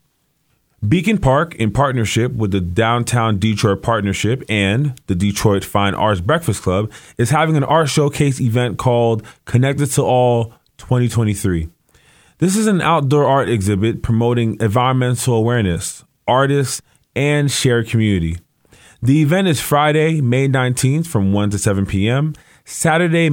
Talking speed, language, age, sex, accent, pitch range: 135 wpm, English, 20-39, male, American, 110-145 Hz